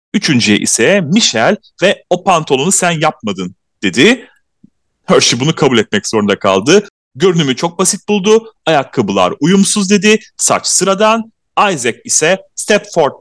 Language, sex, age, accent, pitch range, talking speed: Turkish, male, 30-49, native, 130-205 Hz, 125 wpm